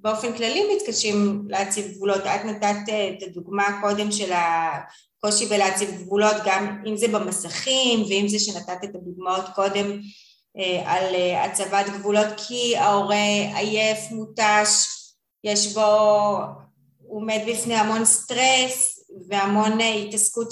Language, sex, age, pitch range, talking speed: Hebrew, female, 20-39, 195-215 Hz, 115 wpm